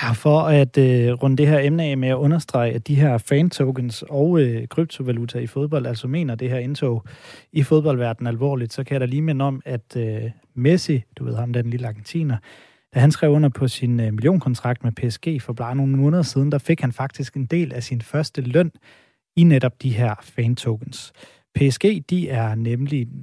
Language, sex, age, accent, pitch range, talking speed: Danish, male, 30-49, native, 120-150 Hz, 205 wpm